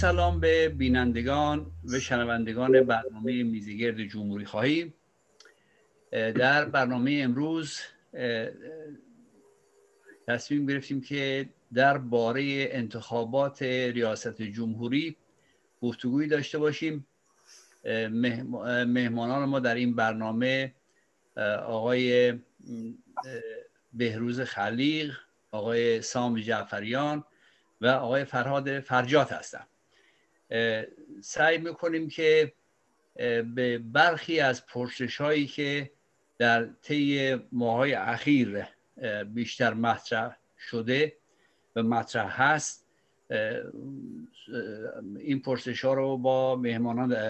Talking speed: 80 wpm